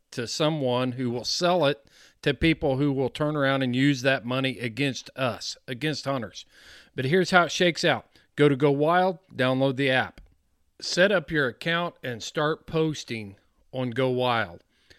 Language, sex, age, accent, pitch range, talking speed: English, male, 40-59, American, 125-160 Hz, 170 wpm